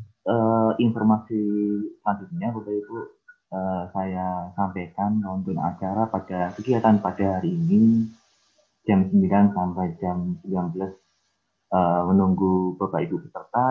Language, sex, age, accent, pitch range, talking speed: Indonesian, male, 20-39, native, 95-110 Hz, 100 wpm